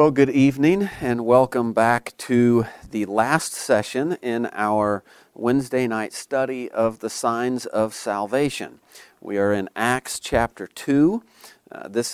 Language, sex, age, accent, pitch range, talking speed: English, male, 40-59, American, 115-140 Hz, 135 wpm